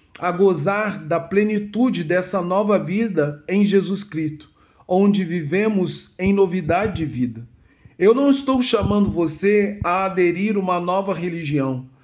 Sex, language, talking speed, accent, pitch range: male, Portuguese, 130 wpm, Brazilian, 150-190 Hz